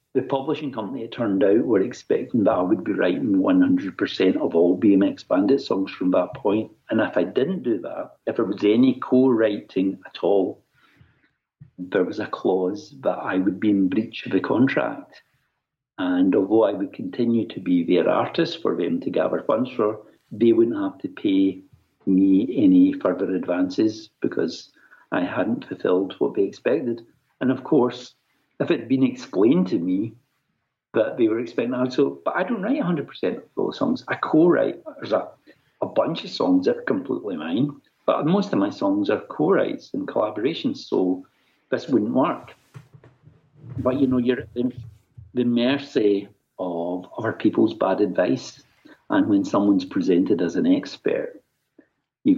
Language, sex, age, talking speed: English, male, 60-79, 170 wpm